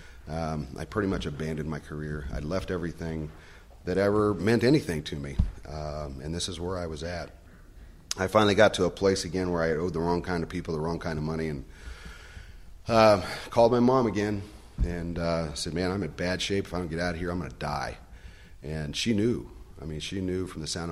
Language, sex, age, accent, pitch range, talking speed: English, male, 40-59, American, 75-90 Hz, 230 wpm